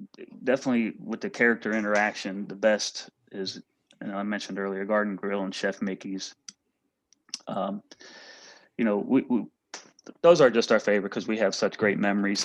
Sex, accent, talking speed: male, American, 160 wpm